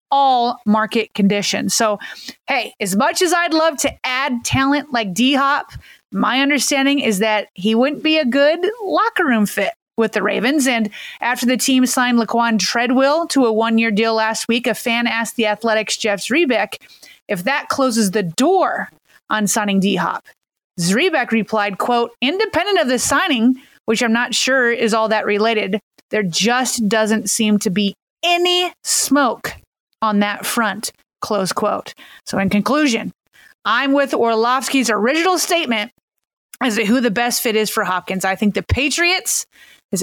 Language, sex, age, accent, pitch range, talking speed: English, female, 30-49, American, 215-280 Hz, 165 wpm